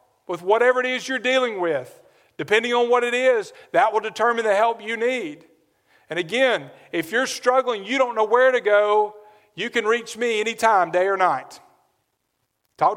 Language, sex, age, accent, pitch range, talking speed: English, male, 50-69, American, 155-215 Hz, 180 wpm